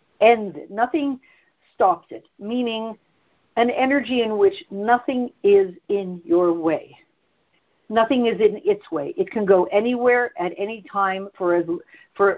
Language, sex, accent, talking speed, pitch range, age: English, female, American, 140 wpm, 175-240 Hz, 60-79